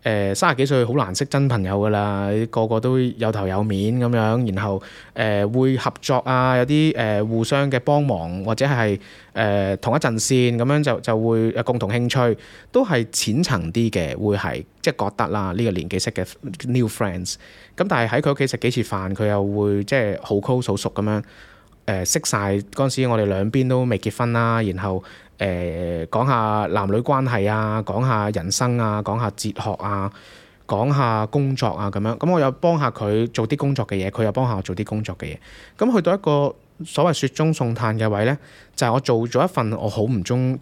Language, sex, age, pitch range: Chinese, male, 20-39, 100-130 Hz